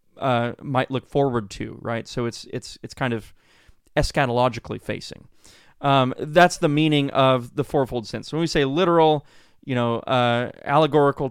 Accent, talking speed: American, 165 wpm